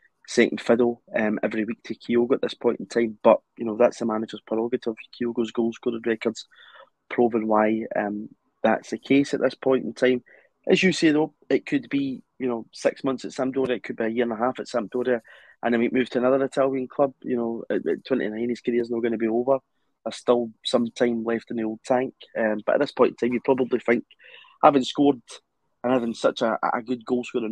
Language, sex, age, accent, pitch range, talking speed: English, male, 20-39, British, 110-125 Hz, 220 wpm